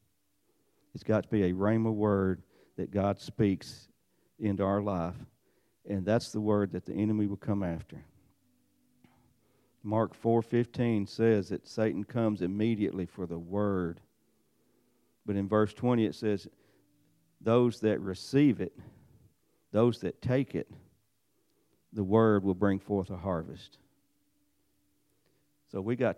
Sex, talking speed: male, 130 wpm